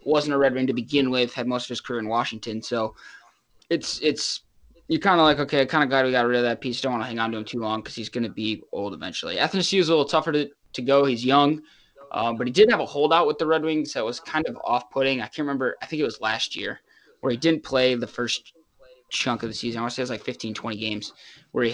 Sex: male